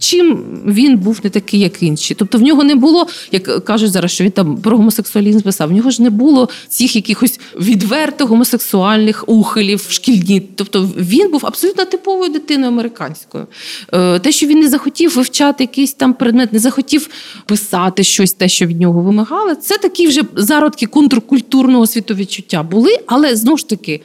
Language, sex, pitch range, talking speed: Ukrainian, female, 210-290 Hz, 170 wpm